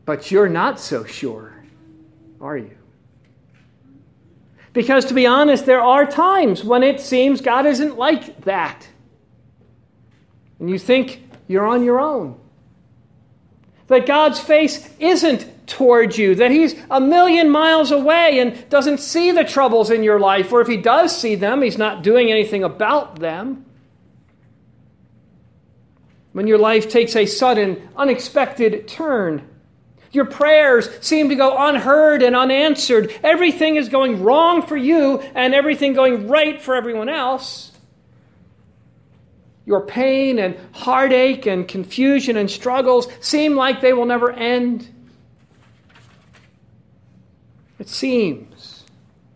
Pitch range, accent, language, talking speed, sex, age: 185-280 Hz, American, English, 130 wpm, male, 50-69